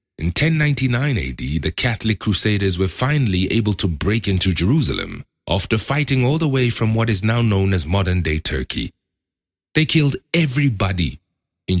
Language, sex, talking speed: English, male, 155 wpm